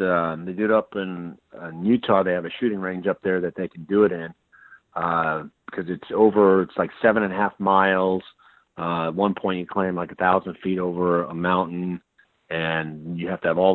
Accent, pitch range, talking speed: American, 90-105 Hz, 225 wpm